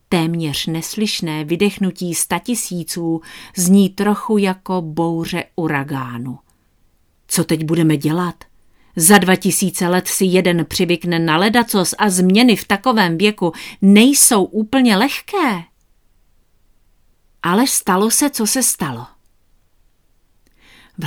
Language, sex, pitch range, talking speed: Czech, female, 165-235 Hz, 105 wpm